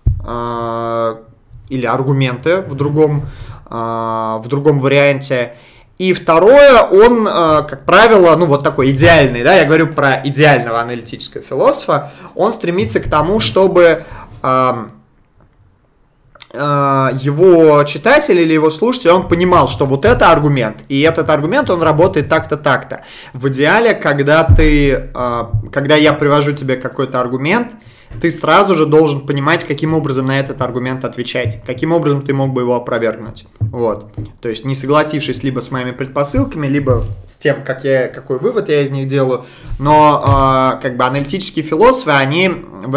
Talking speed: 140 wpm